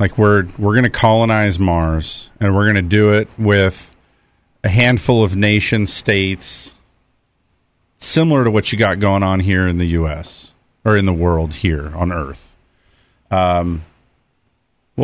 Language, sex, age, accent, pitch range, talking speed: English, male, 40-59, American, 105-135 Hz, 155 wpm